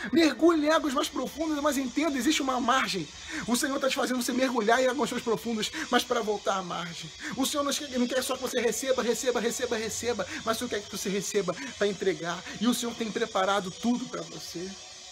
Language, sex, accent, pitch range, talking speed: Portuguese, male, Brazilian, 205-260 Hz, 220 wpm